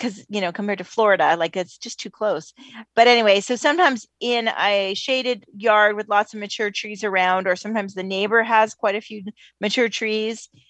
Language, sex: English, female